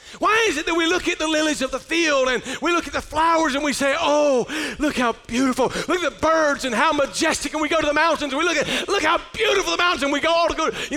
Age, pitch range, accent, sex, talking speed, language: 40-59, 275-340 Hz, American, male, 295 wpm, English